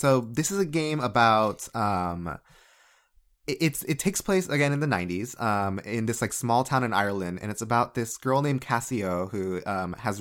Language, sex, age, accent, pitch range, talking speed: English, male, 20-39, American, 90-125 Hz, 195 wpm